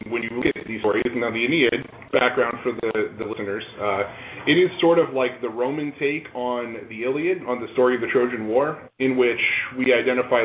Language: English